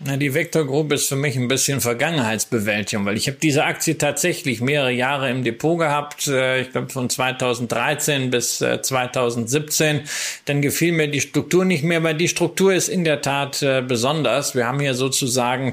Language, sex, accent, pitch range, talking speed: German, male, German, 125-160 Hz, 170 wpm